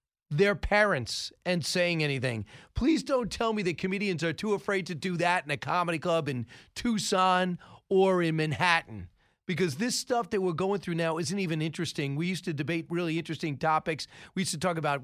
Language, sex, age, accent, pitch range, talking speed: English, male, 40-59, American, 150-195 Hz, 195 wpm